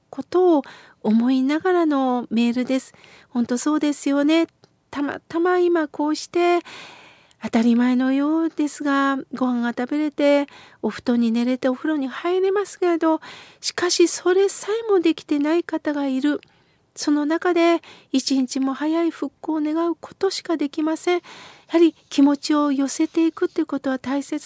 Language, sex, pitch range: Japanese, female, 265-335 Hz